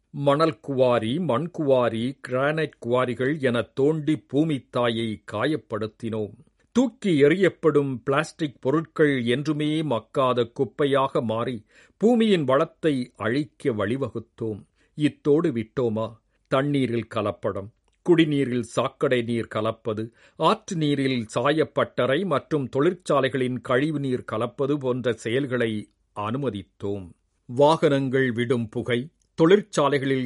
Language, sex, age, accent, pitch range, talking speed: Tamil, male, 50-69, native, 115-150 Hz, 85 wpm